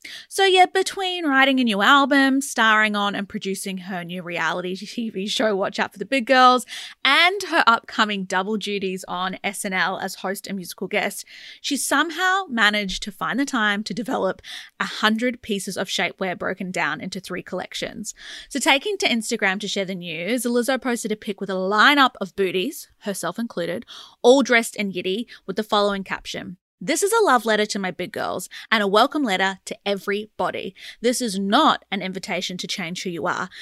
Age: 20-39